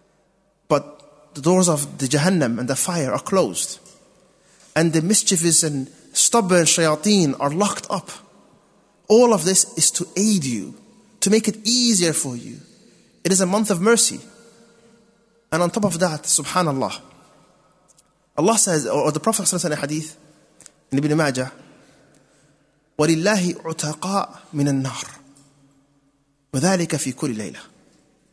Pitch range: 145-195 Hz